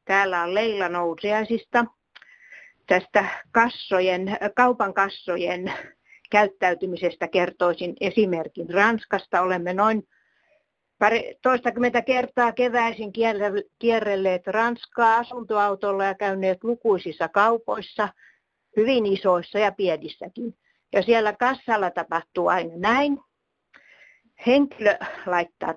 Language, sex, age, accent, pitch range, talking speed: Finnish, female, 50-69, native, 185-235 Hz, 85 wpm